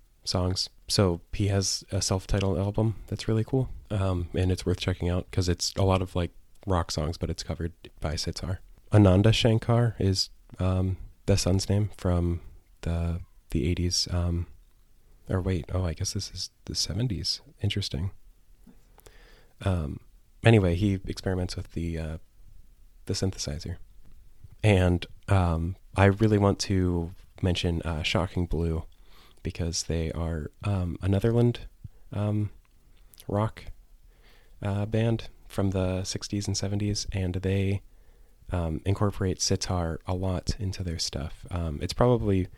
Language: English